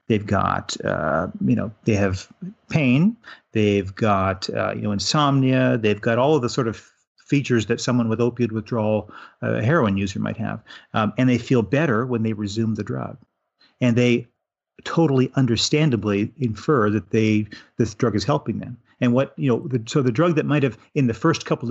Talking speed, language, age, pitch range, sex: 190 wpm, English, 40-59, 105-130 Hz, male